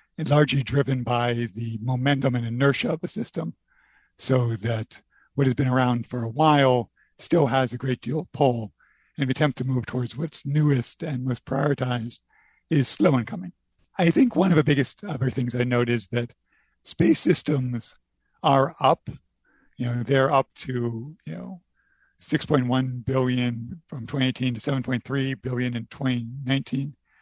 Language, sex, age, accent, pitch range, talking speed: English, male, 50-69, American, 125-150 Hz, 160 wpm